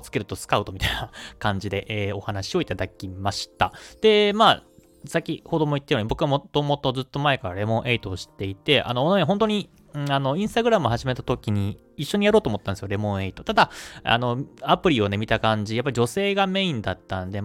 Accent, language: native, Japanese